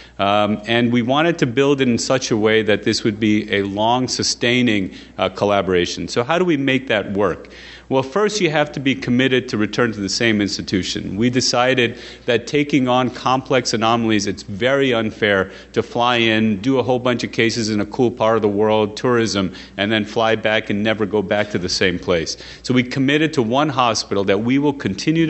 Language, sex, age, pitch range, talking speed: English, male, 40-59, 105-135 Hz, 210 wpm